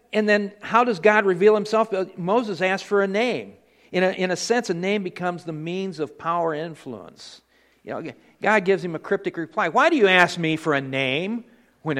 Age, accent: 50-69, American